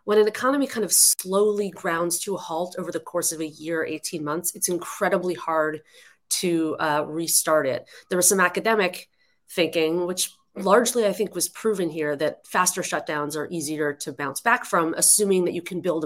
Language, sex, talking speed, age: English, female, 190 wpm, 30-49